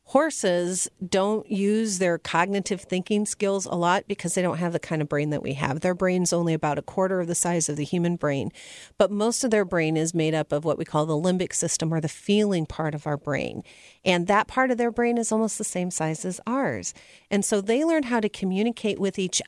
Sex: female